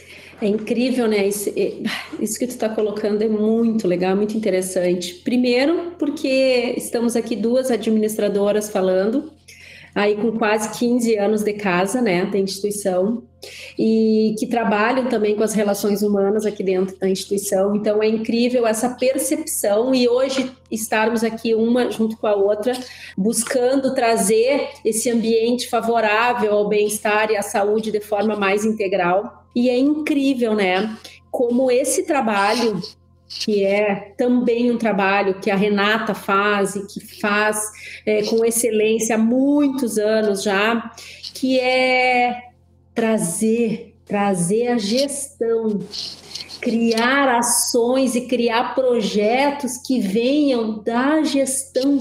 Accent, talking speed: Brazilian, 130 wpm